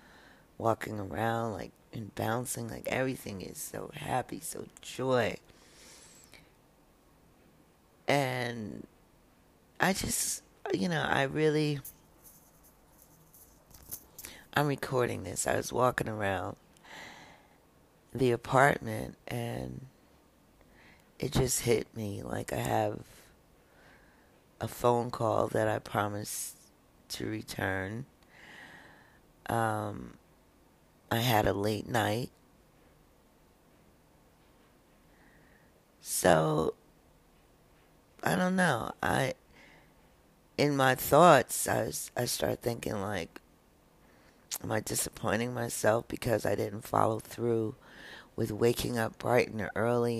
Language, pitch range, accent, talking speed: English, 105-125 Hz, American, 95 wpm